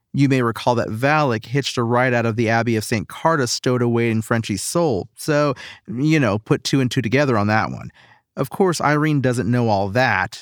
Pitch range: 120-150 Hz